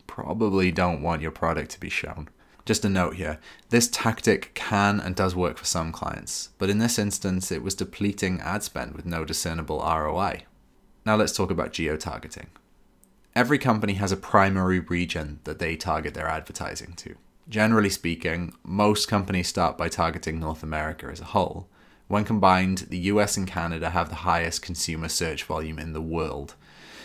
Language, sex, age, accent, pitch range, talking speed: English, male, 20-39, British, 85-105 Hz, 175 wpm